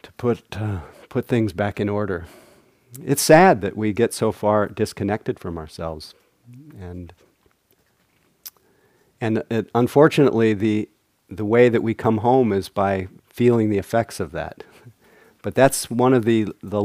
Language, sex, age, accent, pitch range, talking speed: English, male, 50-69, American, 95-120 Hz, 150 wpm